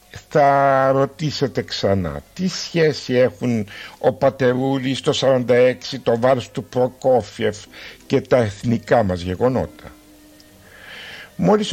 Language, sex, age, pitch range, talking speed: Greek, male, 60-79, 115-155 Hz, 100 wpm